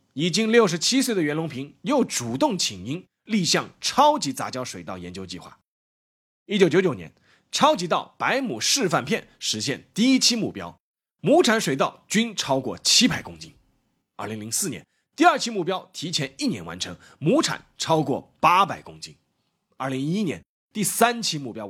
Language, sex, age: Chinese, male, 30-49